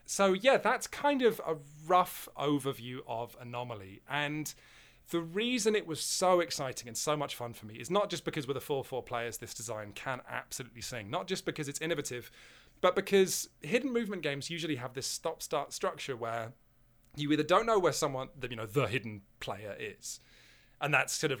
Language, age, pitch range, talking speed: English, 30-49, 120-175 Hz, 190 wpm